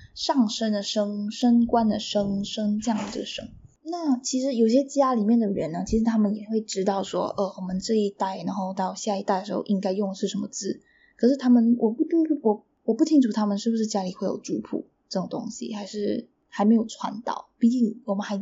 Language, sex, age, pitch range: Chinese, female, 10-29, 195-245 Hz